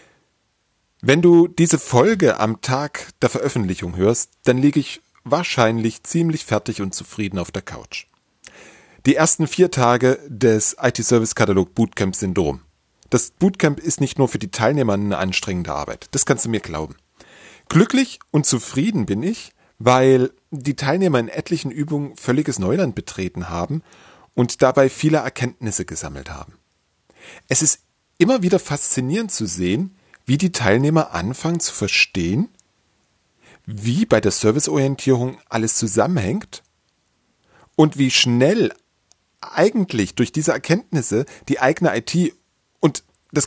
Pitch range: 105-150 Hz